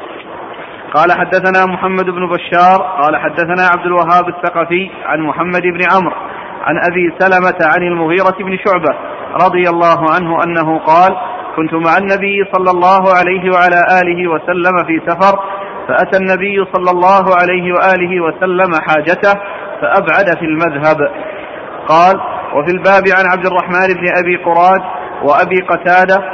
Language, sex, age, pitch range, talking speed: Arabic, male, 40-59, 175-190 Hz, 135 wpm